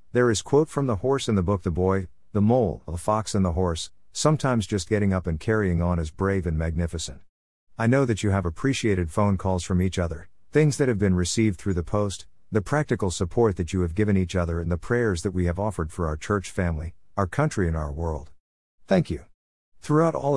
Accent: American